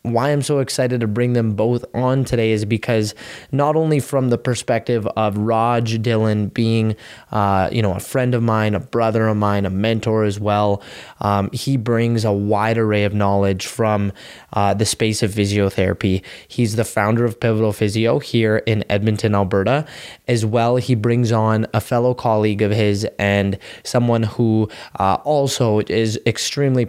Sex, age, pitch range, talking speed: male, 20-39, 105-120 Hz, 170 wpm